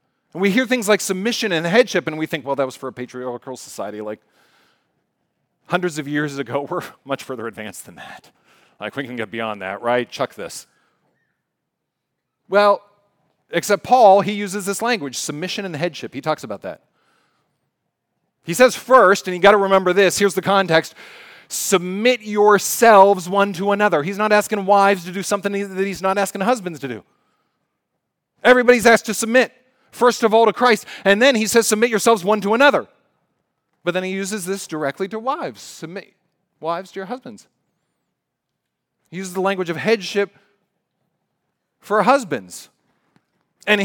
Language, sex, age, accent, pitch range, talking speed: English, male, 40-59, American, 175-225 Hz, 165 wpm